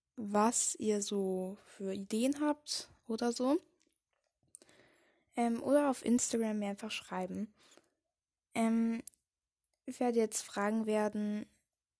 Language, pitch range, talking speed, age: German, 205-255 Hz, 105 wpm, 10-29